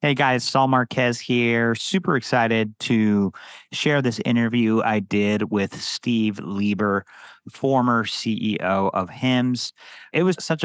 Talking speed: 130 wpm